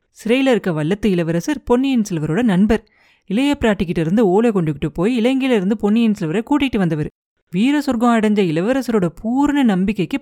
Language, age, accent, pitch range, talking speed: Tamil, 30-49, native, 180-245 Hz, 155 wpm